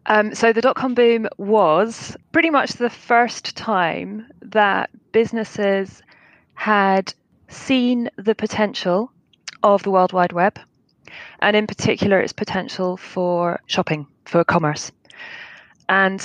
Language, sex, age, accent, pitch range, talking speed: English, female, 20-39, British, 180-220 Hz, 120 wpm